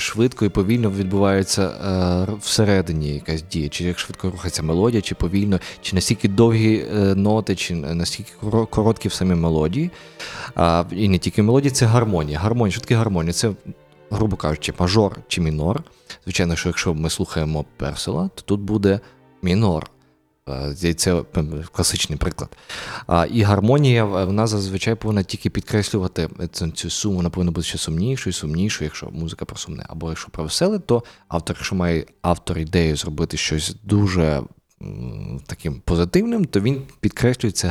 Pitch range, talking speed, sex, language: 85-115 Hz, 145 wpm, male, Ukrainian